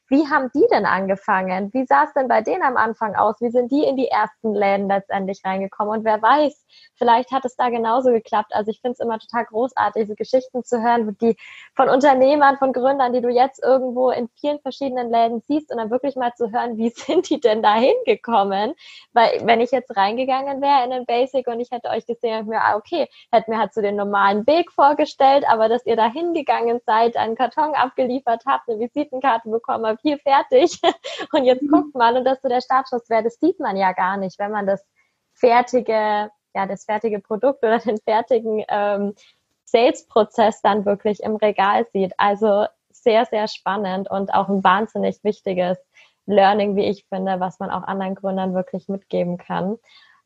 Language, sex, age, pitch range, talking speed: German, female, 20-39, 210-265 Hz, 195 wpm